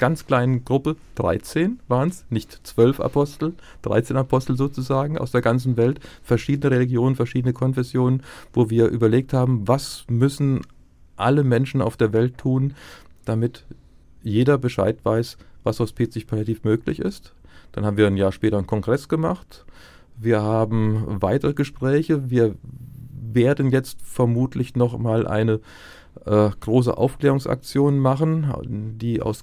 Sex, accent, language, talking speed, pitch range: male, German, German, 130 wpm, 110-135 Hz